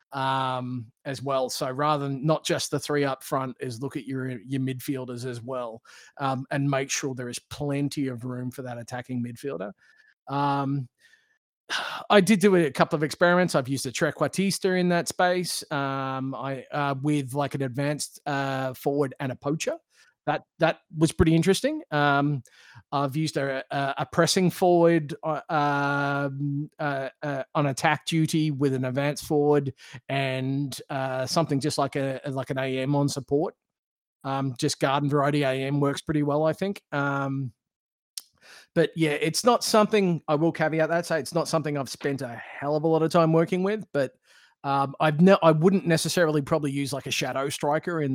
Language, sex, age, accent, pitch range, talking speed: English, male, 30-49, Australian, 135-160 Hz, 180 wpm